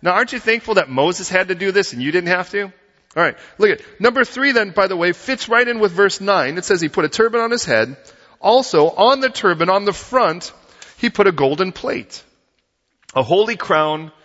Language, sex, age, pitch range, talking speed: English, male, 40-59, 130-205 Hz, 230 wpm